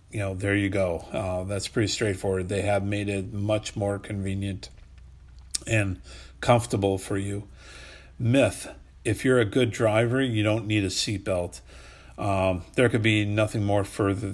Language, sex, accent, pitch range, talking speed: English, male, American, 90-110 Hz, 155 wpm